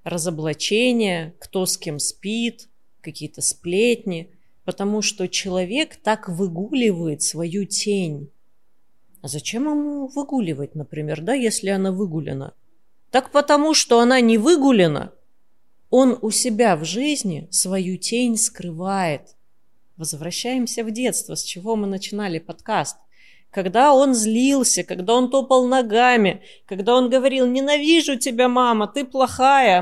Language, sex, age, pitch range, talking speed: Russian, female, 30-49, 175-245 Hz, 120 wpm